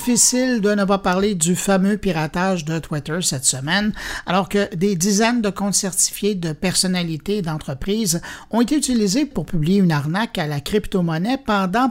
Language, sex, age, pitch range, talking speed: French, male, 60-79, 180-230 Hz, 170 wpm